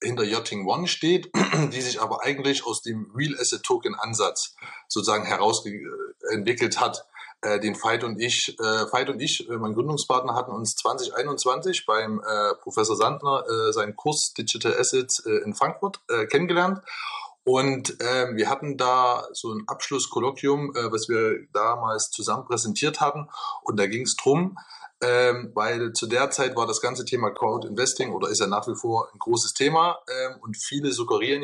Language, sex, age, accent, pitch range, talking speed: German, male, 20-39, German, 115-195 Hz, 165 wpm